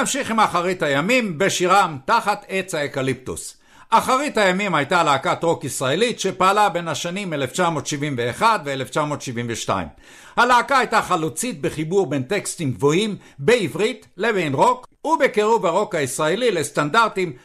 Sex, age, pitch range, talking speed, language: male, 60-79, 145-225 Hz, 115 wpm, English